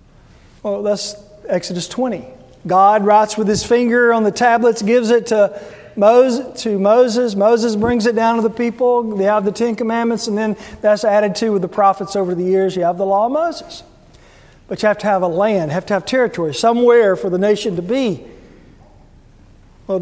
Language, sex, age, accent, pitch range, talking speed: English, male, 40-59, American, 190-230 Hz, 190 wpm